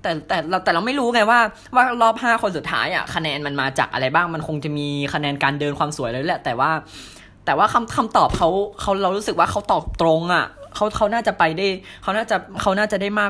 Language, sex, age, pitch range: Thai, female, 10-29, 120-160 Hz